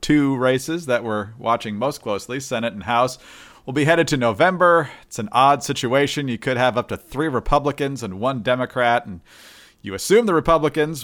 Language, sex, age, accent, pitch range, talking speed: English, male, 40-59, American, 110-145 Hz, 185 wpm